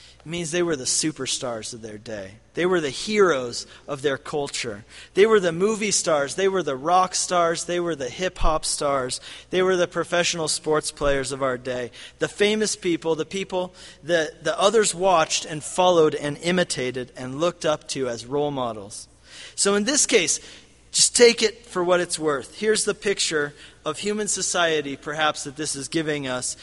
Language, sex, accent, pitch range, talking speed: English, male, American, 145-190 Hz, 185 wpm